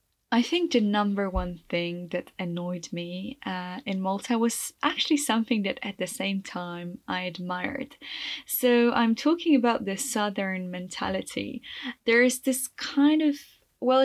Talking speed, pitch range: 150 wpm, 190-255 Hz